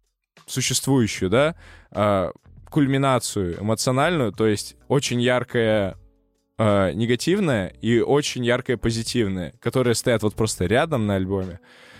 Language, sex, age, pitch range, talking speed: Russian, male, 20-39, 105-130 Hz, 100 wpm